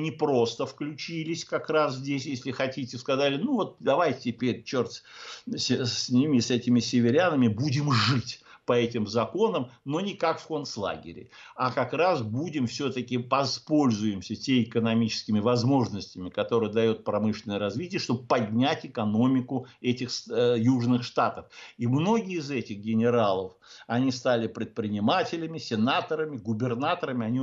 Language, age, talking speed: Russian, 60-79, 130 wpm